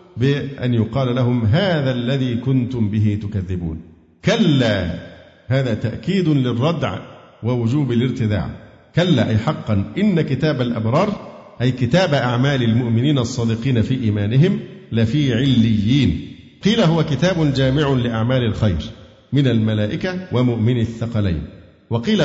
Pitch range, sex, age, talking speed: 110-145 Hz, male, 50-69, 110 wpm